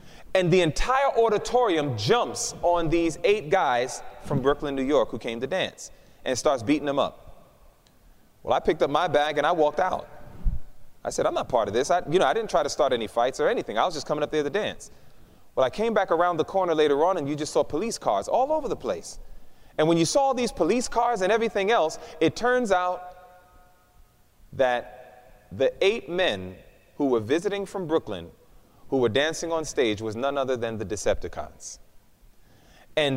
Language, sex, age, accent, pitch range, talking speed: English, male, 30-49, American, 130-185 Hz, 200 wpm